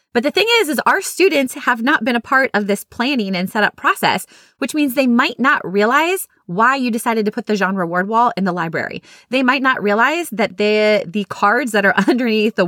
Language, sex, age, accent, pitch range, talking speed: English, female, 20-39, American, 185-250 Hz, 225 wpm